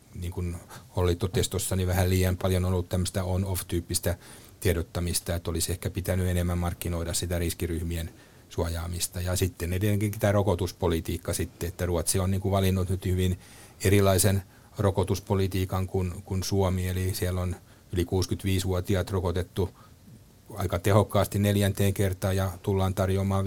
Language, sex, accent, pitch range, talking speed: Finnish, male, native, 90-100 Hz, 130 wpm